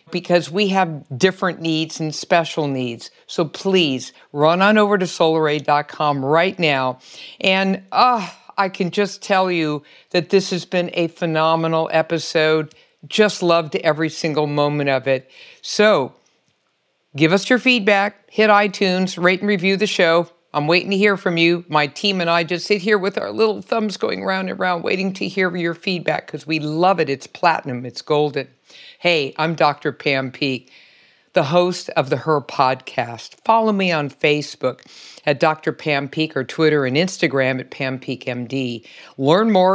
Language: English